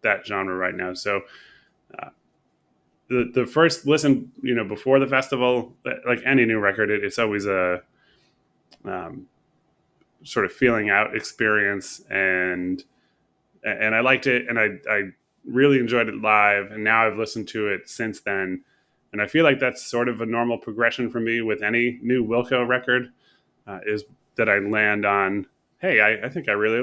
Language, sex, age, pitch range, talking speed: English, male, 20-39, 105-125 Hz, 175 wpm